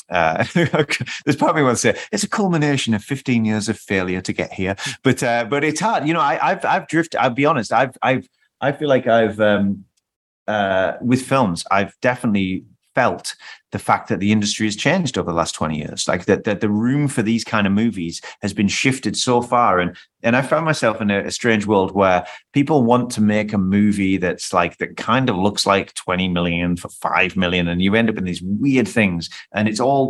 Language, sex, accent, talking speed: English, male, British, 220 wpm